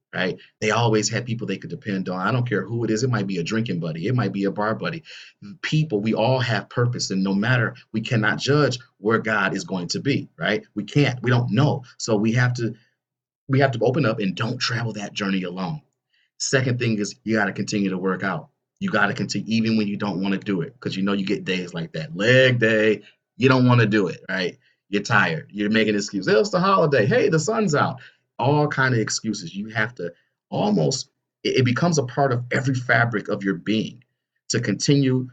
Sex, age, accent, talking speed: male, 30-49, American, 235 wpm